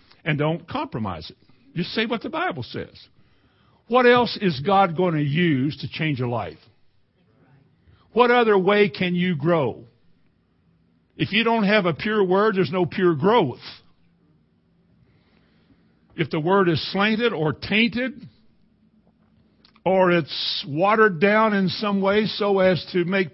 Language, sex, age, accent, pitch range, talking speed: English, male, 60-79, American, 135-200 Hz, 145 wpm